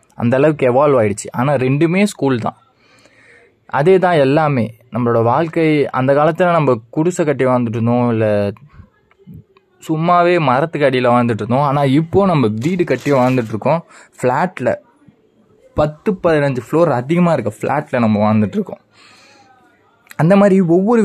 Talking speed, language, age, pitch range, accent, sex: 115 wpm, Tamil, 20-39, 120-170 Hz, native, male